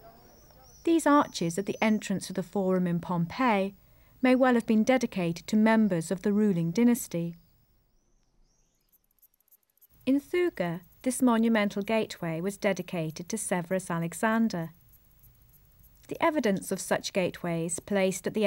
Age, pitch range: 40-59, 165-220 Hz